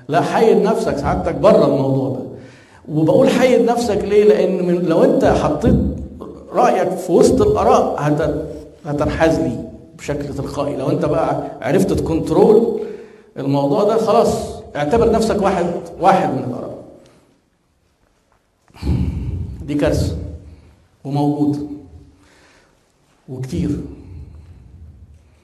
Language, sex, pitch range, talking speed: Arabic, male, 95-160 Hz, 95 wpm